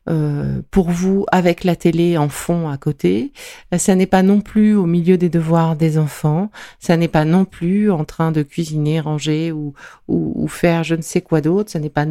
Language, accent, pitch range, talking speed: French, French, 165-205 Hz, 215 wpm